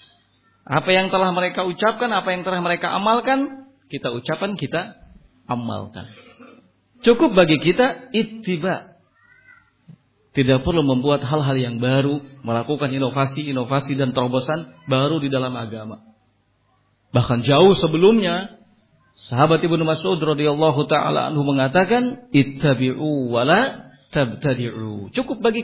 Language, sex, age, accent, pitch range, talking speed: Indonesian, male, 40-59, native, 130-200 Hz, 110 wpm